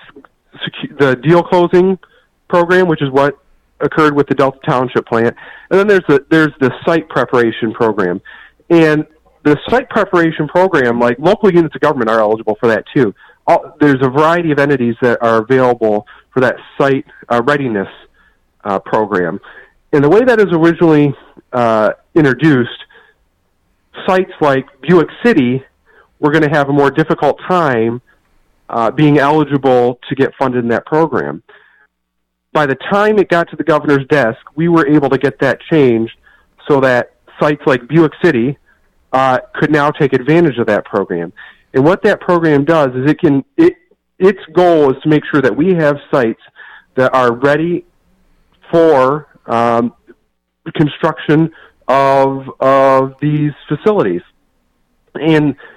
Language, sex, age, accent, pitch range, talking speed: English, male, 40-59, American, 125-165 Hz, 150 wpm